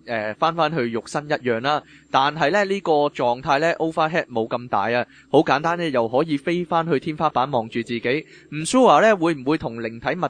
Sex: male